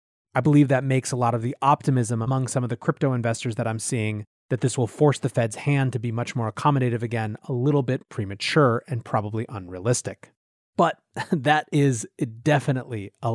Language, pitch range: English, 120-160 Hz